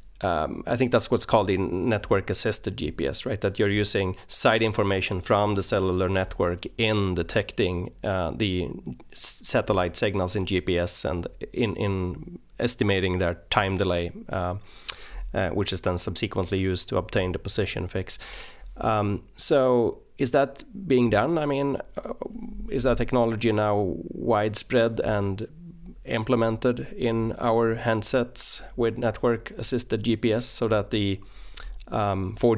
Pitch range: 95-115 Hz